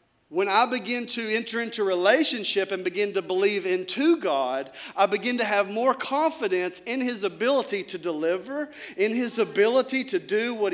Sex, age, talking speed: male, 40-59, 170 wpm